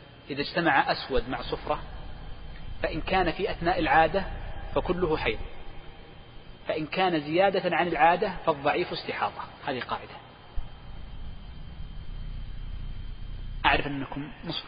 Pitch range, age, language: 105-165 Hz, 40-59, Arabic